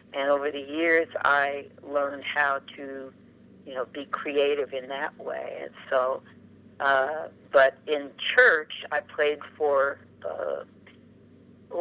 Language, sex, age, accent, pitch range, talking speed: English, female, 50-69, American, 135-165 Hz, 125 wpm